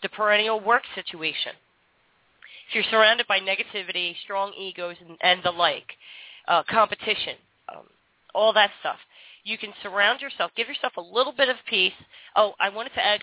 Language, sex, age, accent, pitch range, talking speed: English, female, 30-49, American, 185-225 Hz, 170 wpm